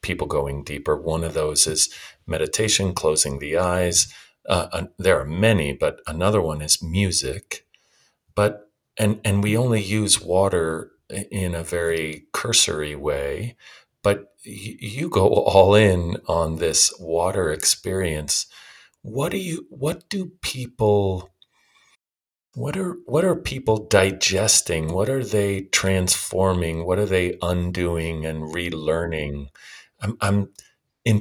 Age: 40-59